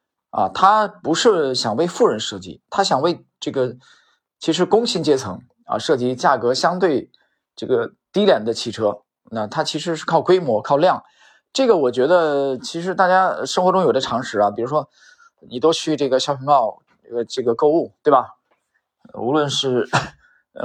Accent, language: native, Chinese